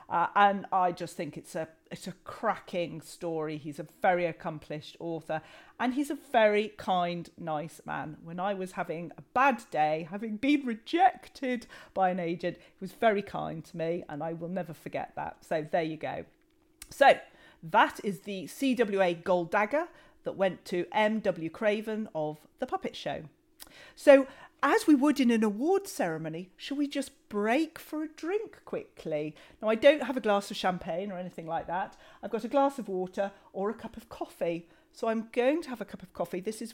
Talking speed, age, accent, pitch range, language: 190 wpm, 40-59, British, 175-275 Hz, English